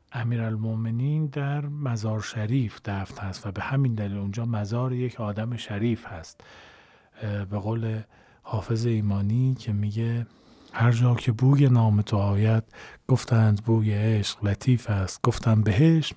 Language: Persian